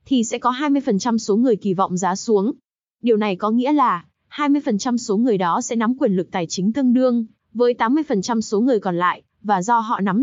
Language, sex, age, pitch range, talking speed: Vietnamese, female, 20-39, 200-255 Hz, 215 wpm